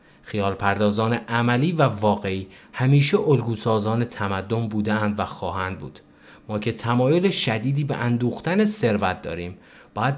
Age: 20-39